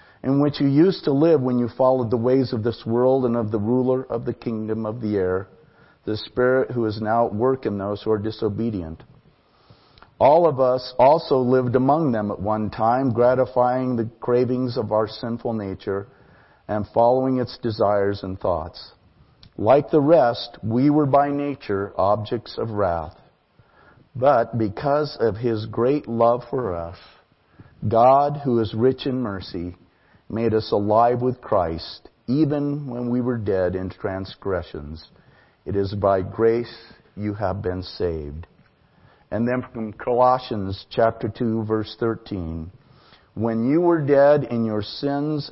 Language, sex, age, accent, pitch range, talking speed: English, male, 50-69, American, 105-125 Hz, 155 wpm